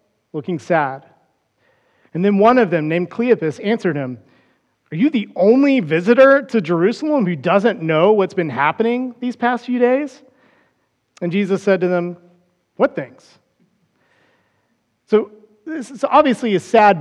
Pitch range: 170-225 Hz